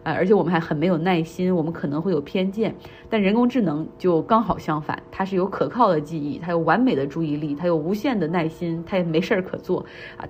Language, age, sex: Chinese, 30-49, female